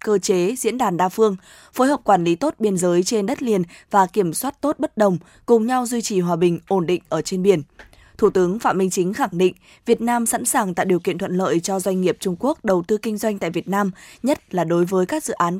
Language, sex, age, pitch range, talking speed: Vietnamese, female, 20-39, 180-225 Hz, 260 wpm